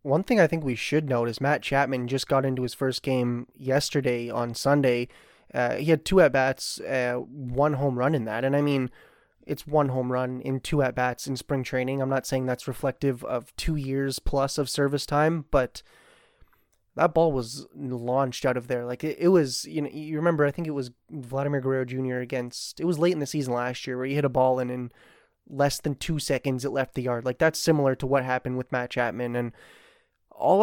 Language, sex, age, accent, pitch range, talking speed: English, male, 20-39, American, 130-150 Hz, 225 wpm